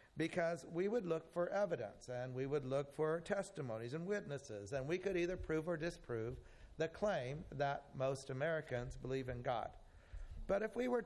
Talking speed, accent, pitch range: 180 wpm, American, 125-165 Hz